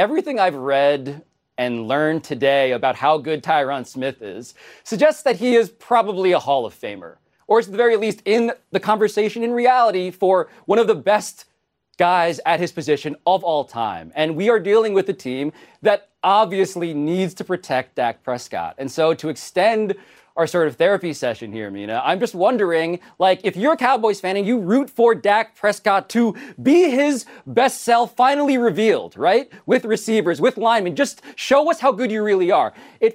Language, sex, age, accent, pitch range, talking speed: English, male, 30-49, American, 165-255 Hz, 190 wpm